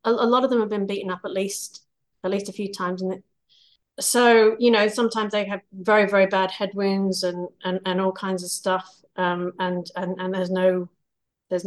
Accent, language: British, English